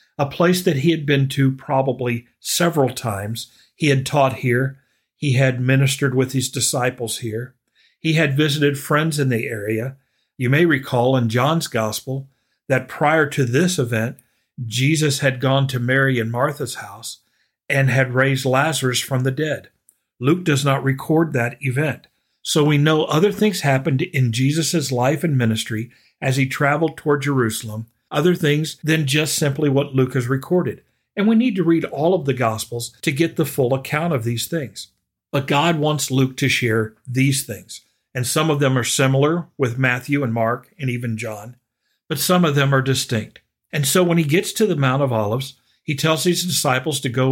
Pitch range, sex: 125-155 Hz, male